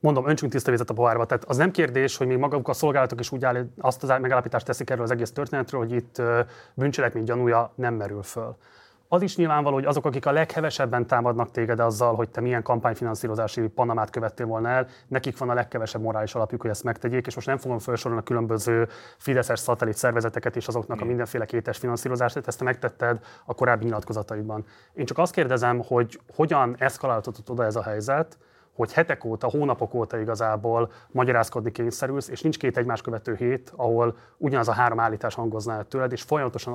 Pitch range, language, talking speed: 115-130 Hz, Hungarian, 190 wpm